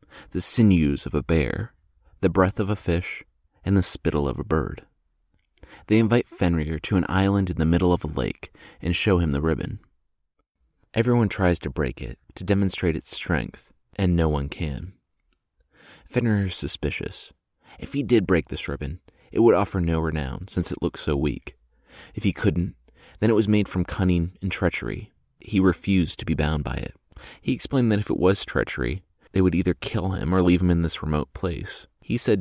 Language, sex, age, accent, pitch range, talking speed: English, male, 30-49, American, 80-105 Hz, 195 wpm